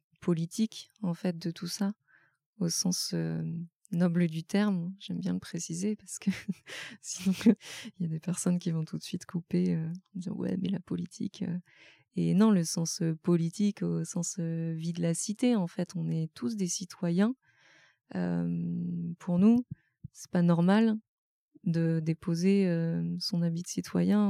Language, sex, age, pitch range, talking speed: French, female, 20-39, 165-190 Hz, 170 wpm